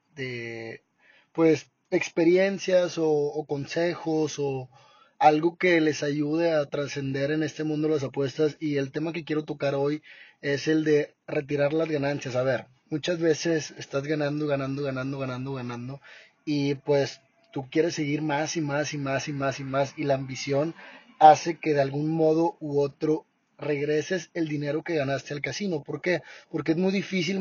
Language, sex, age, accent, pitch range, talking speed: Spanish, male, 30-49, Mexican, 145-165 Hz, 170 wpm